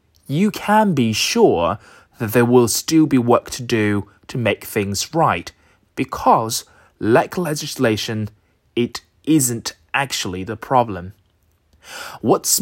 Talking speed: 120 wpm